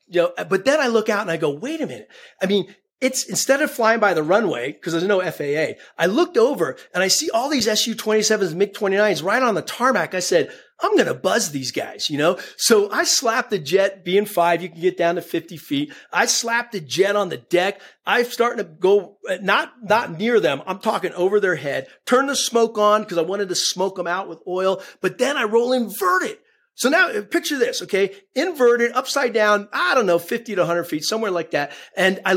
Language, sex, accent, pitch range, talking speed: English, male, American, 180-245 Hz, 225 wpm